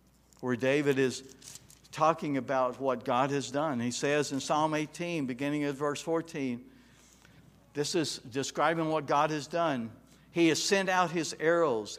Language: English